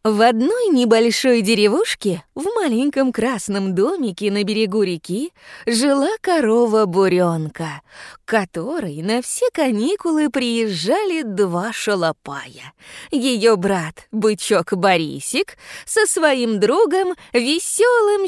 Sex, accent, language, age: female, native, Russian, 20-39